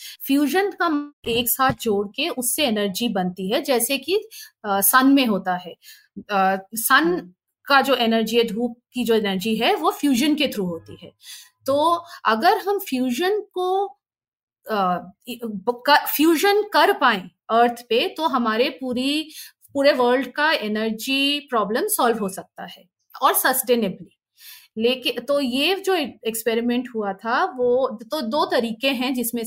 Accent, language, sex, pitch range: native, Hindi, female, 220-300 Hz